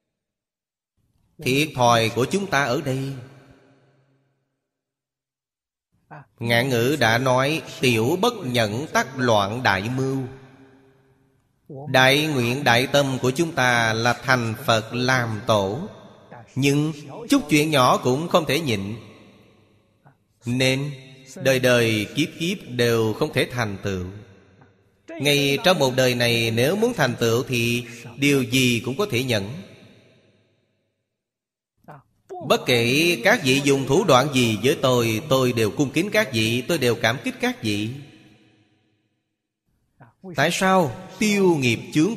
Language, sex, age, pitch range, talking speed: Vietnamese, male, 30-49, 110-140 Hz, 130 wpm